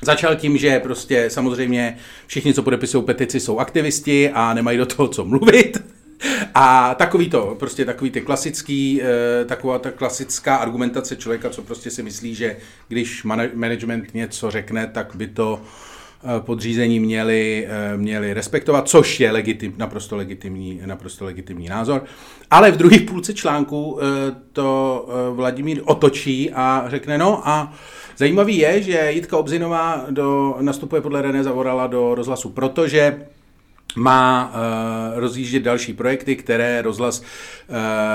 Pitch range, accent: 115-145 Hz, native